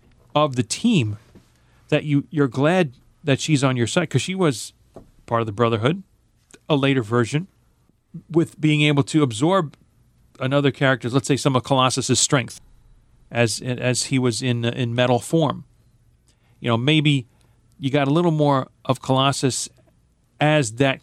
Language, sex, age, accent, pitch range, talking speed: English, male, 40-59, American, 115-140 Hz, 155 wpm